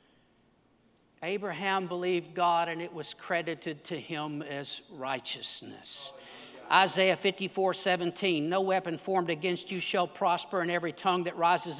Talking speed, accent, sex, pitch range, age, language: 130 wpm, American, male, 175-215 Hz, 60-79, English